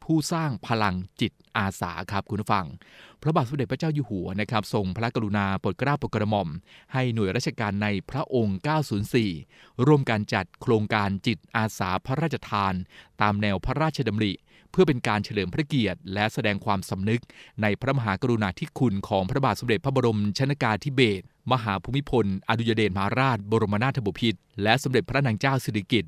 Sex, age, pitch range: male, 20-39, 105-130 Hz